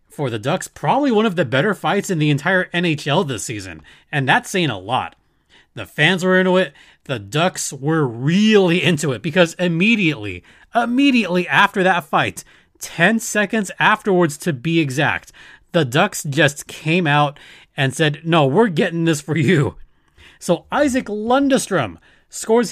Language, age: English, 30-49